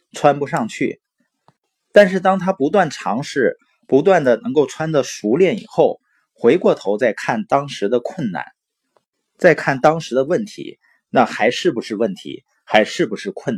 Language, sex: Chinese, male